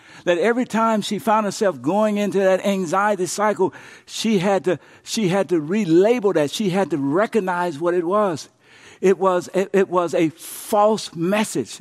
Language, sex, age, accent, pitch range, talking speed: English, male, 60-79, American, 160-215 Hz, 175 wpm